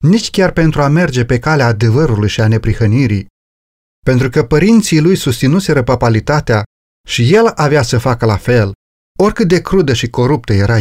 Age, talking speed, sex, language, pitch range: 30-49, 165 wpm, male, Romanian, 115-155 Hz